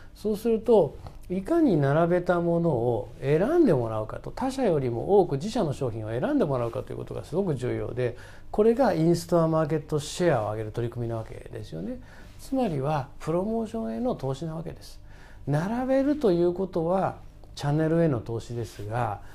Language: Japanese